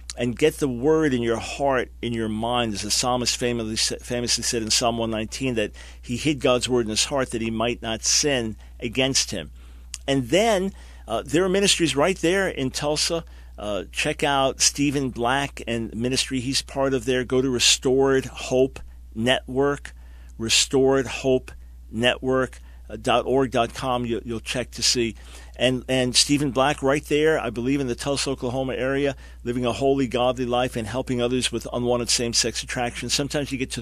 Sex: male